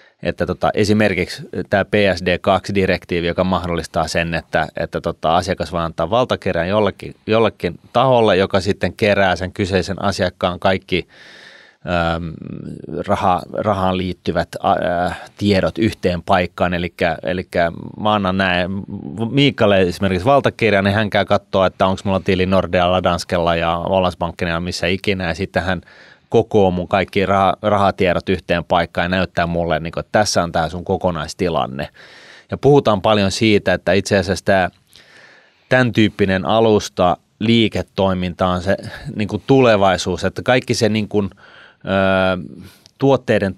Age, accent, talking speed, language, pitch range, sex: 30-49, native, 130 wpm, Finnish, 90-105 Hz, male